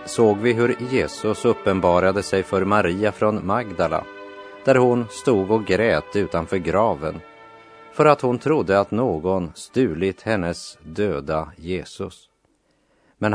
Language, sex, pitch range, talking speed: Hungarian, male, 90-110 Hz, 125 wpm